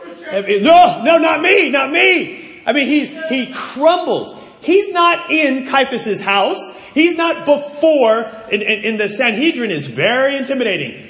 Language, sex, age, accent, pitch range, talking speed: English, male, 40-59, American, 195-270 Hz, 140 wpm